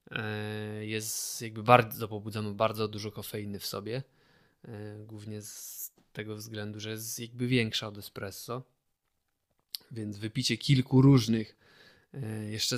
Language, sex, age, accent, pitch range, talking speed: Polish, male, 20-39, native, 105-120 Hz, 115 wpm